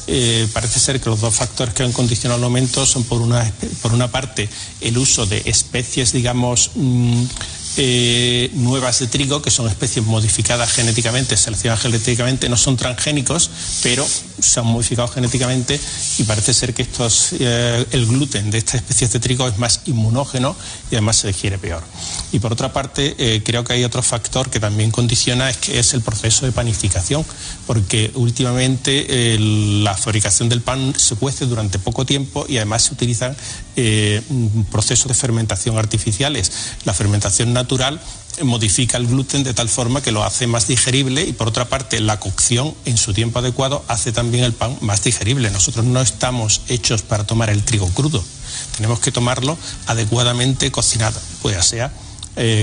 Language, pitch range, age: Spanish, 110-130 Hz, 30-49